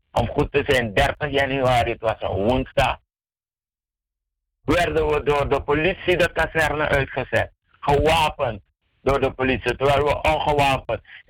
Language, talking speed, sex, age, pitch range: Dutch, 135 wpm, male, 60-79, 125-150 Hz